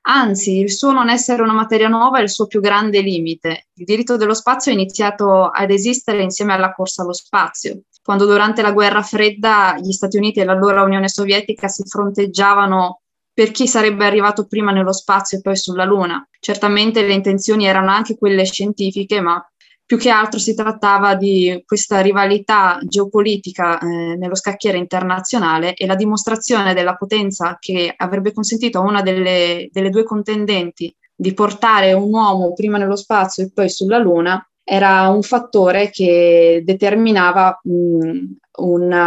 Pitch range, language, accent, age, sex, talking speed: 185-215 Hz, Italian, native, 20-39, female, 160 wpm